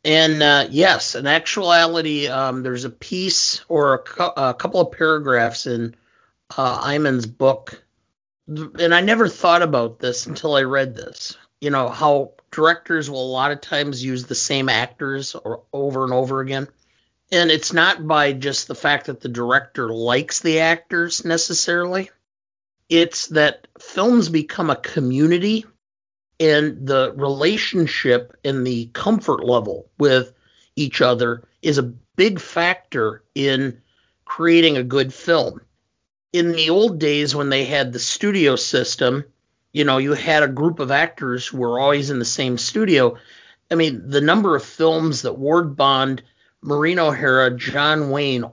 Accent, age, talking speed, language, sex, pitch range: American, 50-69, 150 wpm, English, male, 125-160 Hz